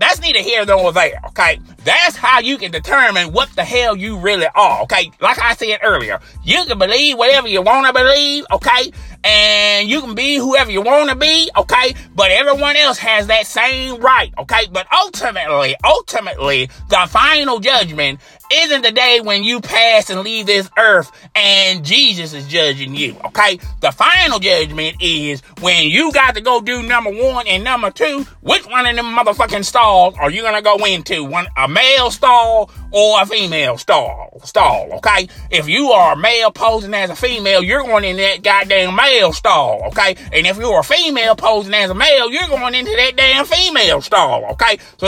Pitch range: 185-260 Hz